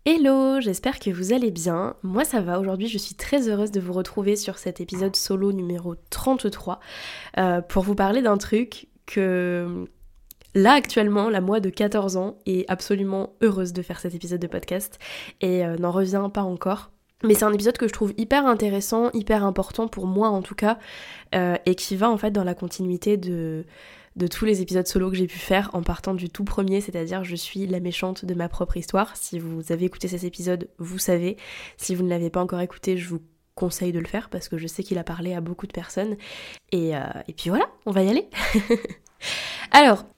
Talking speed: 215 wpm